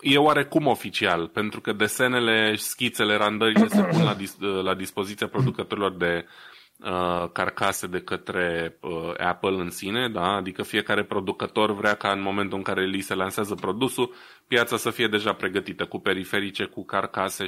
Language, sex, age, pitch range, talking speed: Romanian, male, 20-39, 90-110 Hz, 160 wpm